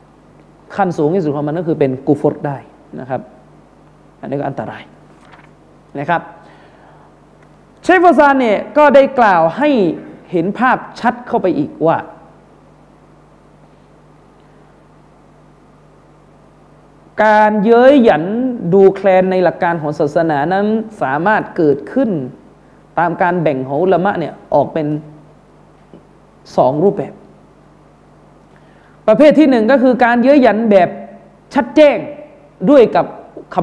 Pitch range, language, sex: 175-255 Hz, Thai, male